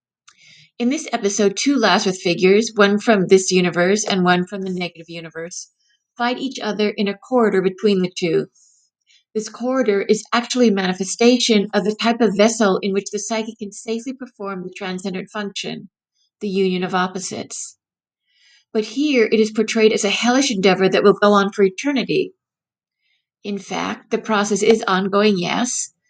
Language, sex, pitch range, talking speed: English, female, 190-225 Hz, 165 wpm